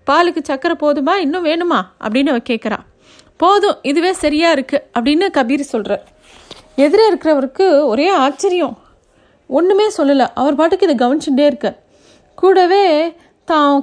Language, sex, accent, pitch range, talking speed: Tamil, female, native, 210-280 Hz, 120 wpm